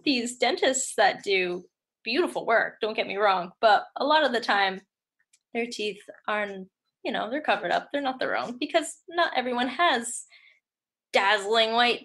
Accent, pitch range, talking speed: American, 205-265 Hz, 170 wpm